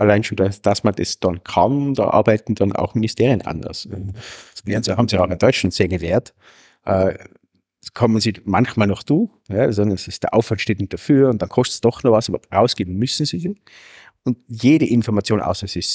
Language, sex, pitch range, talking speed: German, male, 95-120 Hz, 205 wpm